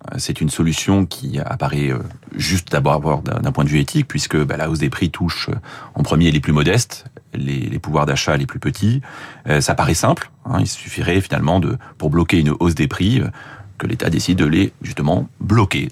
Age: 30-49